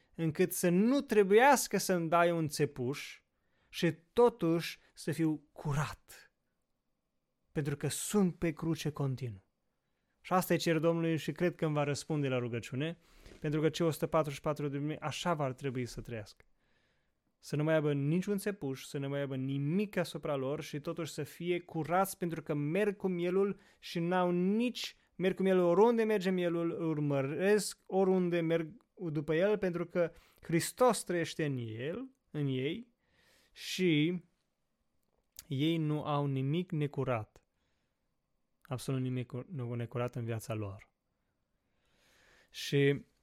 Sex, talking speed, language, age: male, 140 wpm, Romanian, 20-39